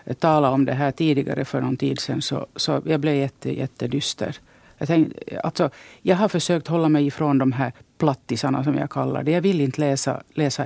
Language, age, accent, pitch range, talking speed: English, 50-69, Finnish, 140-160 Hz, 215 wpm